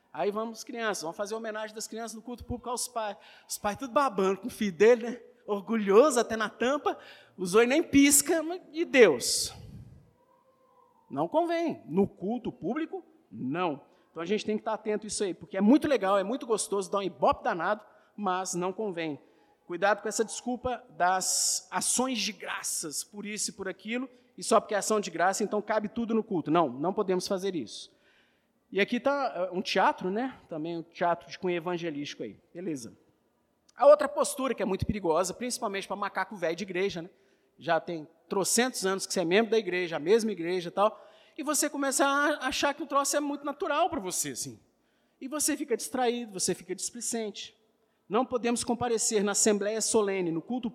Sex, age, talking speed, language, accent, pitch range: male, 50-69, 195 wpm, Portuguese, Brazilian, 185-245 Hz